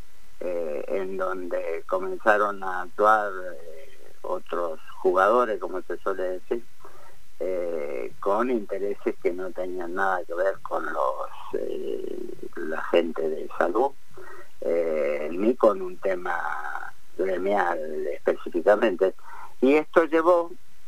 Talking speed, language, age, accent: 110 wpm, Spanish, 40-59, Spanish